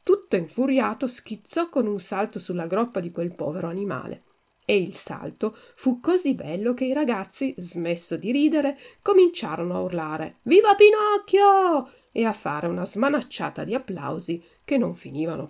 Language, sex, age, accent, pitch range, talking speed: Italian, female, 50-69, native, 185-270 Hz, 150 wpm